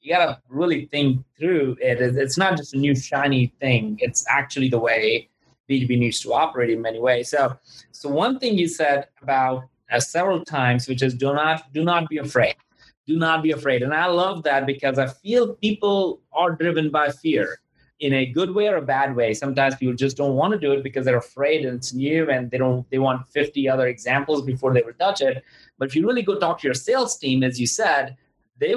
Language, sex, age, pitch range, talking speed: English, male, 30-49, 130-170 Hz, 225 wpm